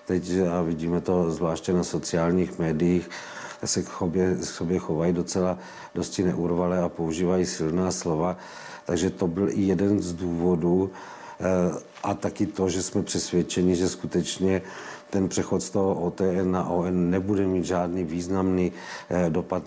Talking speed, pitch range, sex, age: 145 wpm, 85-95 Hz, male, 50-69